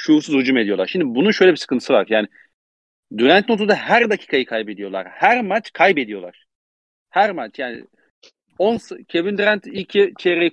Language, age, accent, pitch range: Turkish, 40-59, native, 120-190 Hz